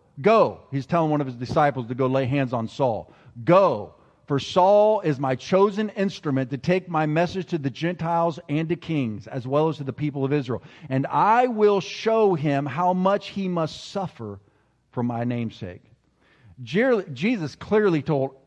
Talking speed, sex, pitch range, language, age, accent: 175 wpm, male, 130-185 Hz, English, 50-69, American